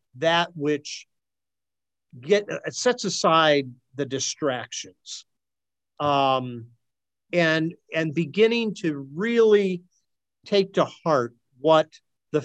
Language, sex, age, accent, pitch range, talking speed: English, male, 50-69, American, 130-175 Hz, 85 wpm